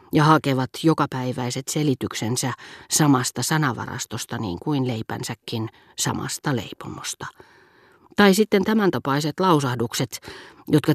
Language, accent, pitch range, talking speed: Finnish, native, 125-150 Hz, 95 wpm